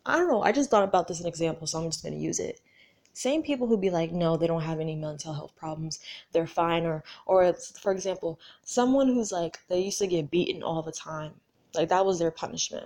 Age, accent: 20-39, American